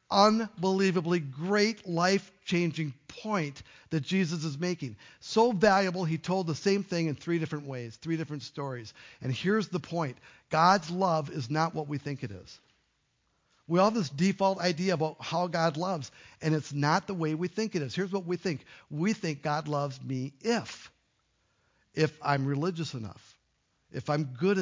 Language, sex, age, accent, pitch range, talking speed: English, male, 50-69, American, 140-180 Hz, 175 wpm